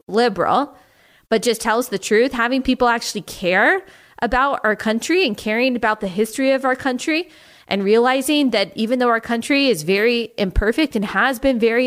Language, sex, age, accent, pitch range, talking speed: English, female, 20-39, American, 205-255 Hz, 175 wpm